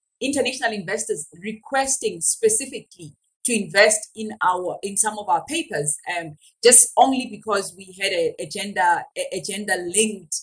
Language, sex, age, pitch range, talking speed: English, female, 30-49, 195-250 Hz, 140 wpm